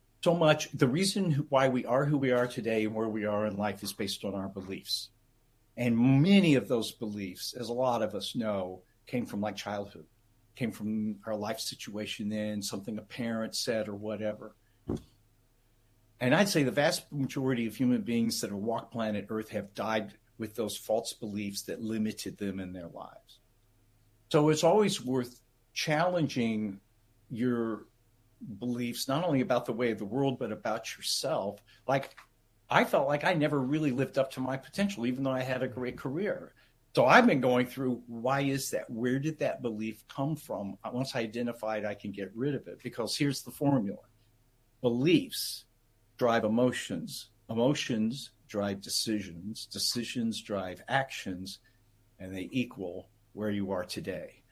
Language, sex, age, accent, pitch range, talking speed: English, male, 50-69, American, 105-130 Hz, 170 wpm